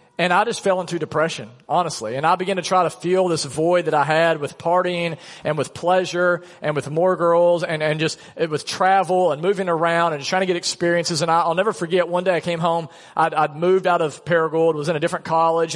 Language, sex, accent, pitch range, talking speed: English, male, American, 160-185 Hz, 235 wpm